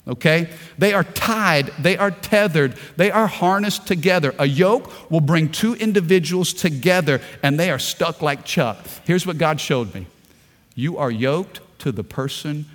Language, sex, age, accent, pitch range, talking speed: English, male, 50-69, American, 160-225 Hz, 165 wpm